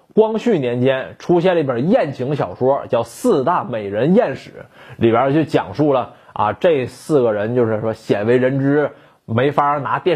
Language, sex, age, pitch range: Chinese, male, 20-39, 130-190 Hz